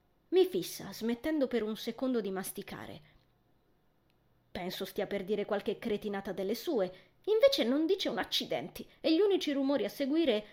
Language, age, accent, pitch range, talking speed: Italian, 20-39, native, 205-260 Hz, 155 wpm